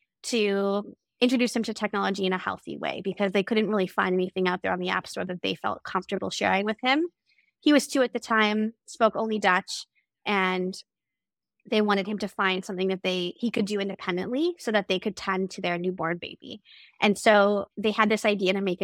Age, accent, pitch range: 20-39, American, 190-220 Hz